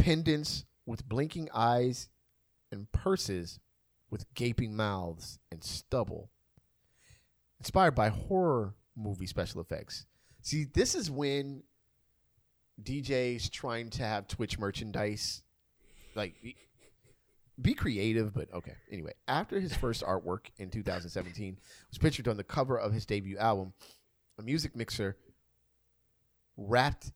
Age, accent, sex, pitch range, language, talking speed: 30-49, American, male, 100-130 Hz, English, 115 wpm